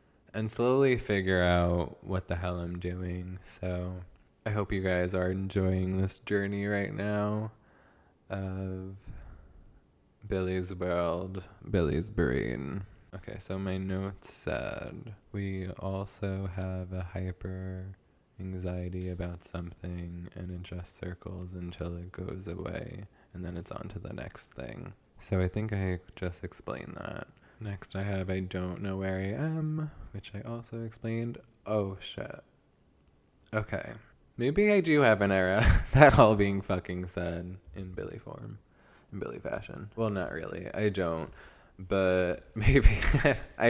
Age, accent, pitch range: 20-39, American, 90-100 Hz